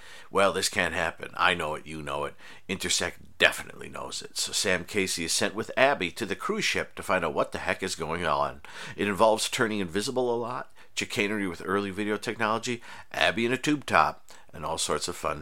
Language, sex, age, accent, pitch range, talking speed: English, male, 50-69, American, 85-105 Hz, 215 wpm